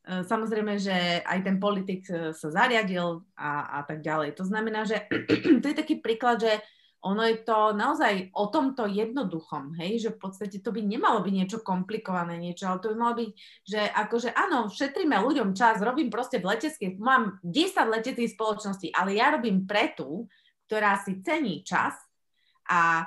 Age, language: 30-49, Slovak